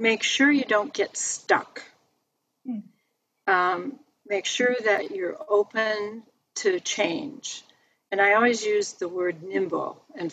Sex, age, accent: female, 50-69, American